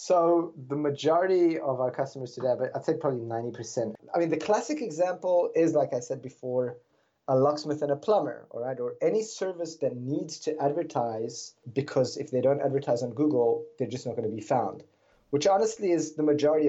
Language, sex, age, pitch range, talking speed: English, male, 20-39, 125-155 Hz, 195 wpm